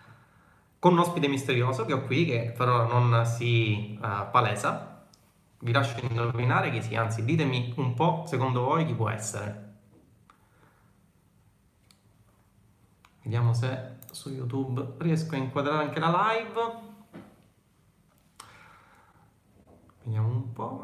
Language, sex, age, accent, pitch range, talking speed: Italian, male, 30-49, native, 115-150 Hz, 110 wpm